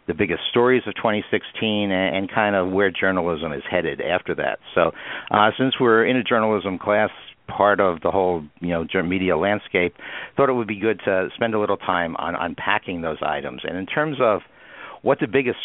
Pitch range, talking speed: 90-110 Hz, 195 wpm